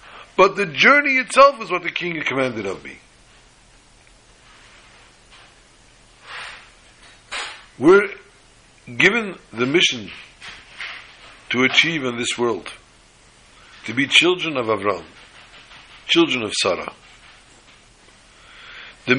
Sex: male